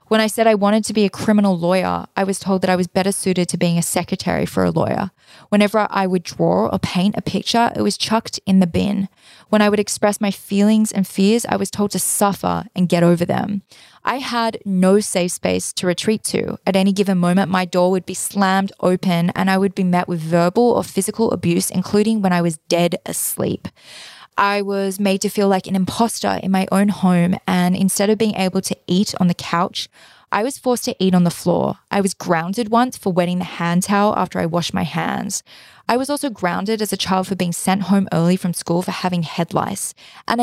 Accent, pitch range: Australian, 180-210 Hz